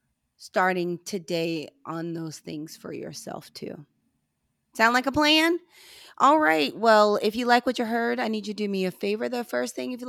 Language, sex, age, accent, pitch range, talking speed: English, female, 30-49, American, 165-215 Hz, 200 wpm